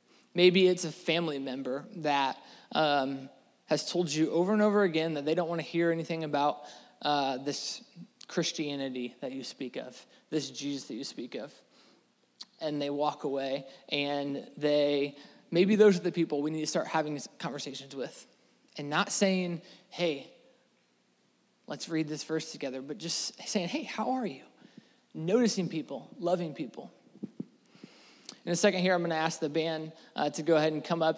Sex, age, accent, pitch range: male, 20-39, American, 150-190 Hz